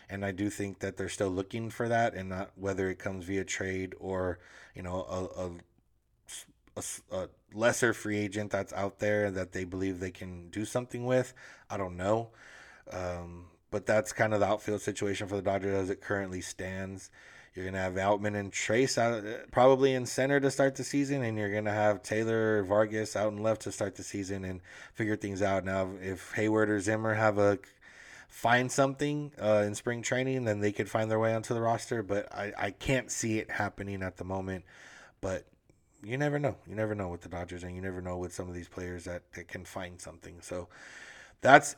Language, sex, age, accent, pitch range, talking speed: English, male, 20-39, American, 95-115 Hz, 210 wpm